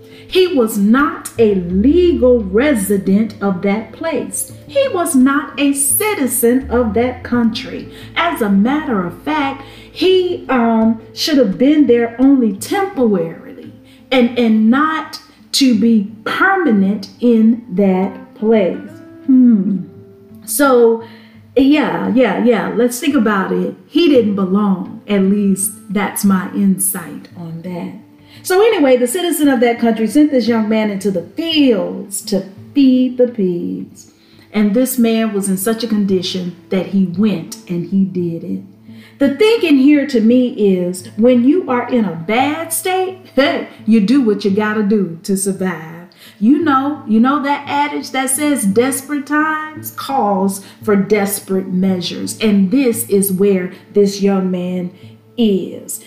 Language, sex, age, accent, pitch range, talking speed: English, female, 40-59, American, 195-270 Hz, 145 wpm